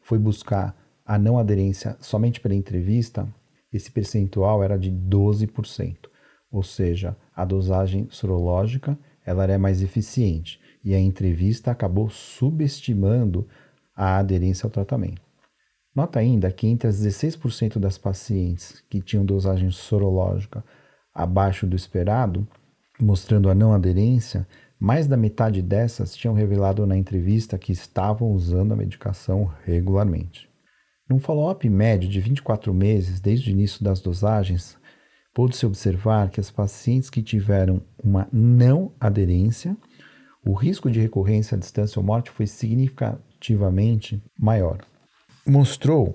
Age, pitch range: 40-59, 95-120 Hz